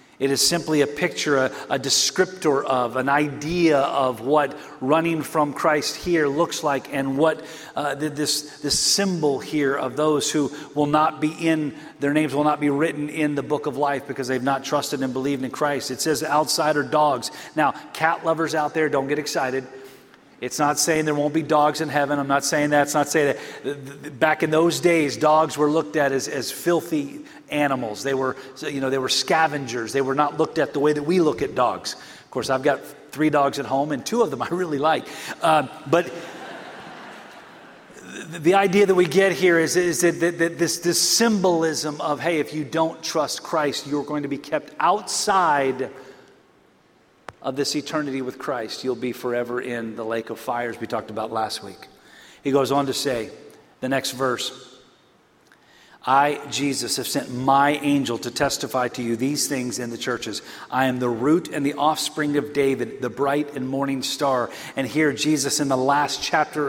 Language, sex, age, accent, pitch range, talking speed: English, male, 40-59, American, 135-155 Hz, 195 wpm